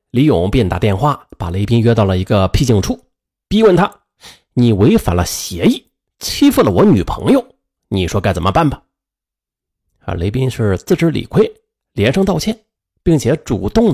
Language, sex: Chinese, male